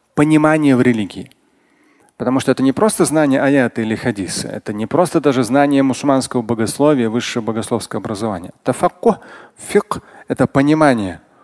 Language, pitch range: Russian, 125-180 Hz